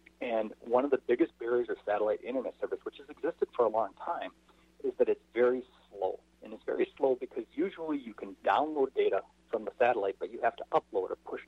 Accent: American